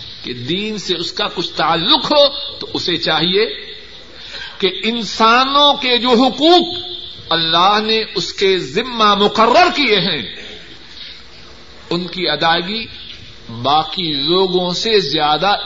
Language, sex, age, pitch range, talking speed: Urdu, male, 50-69, 170-240 Hz, 115 wpm